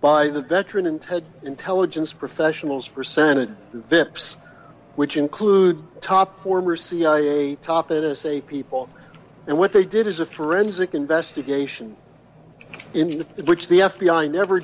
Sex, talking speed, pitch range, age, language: male, 125 wpm, 145-175 Hz, 60-79, English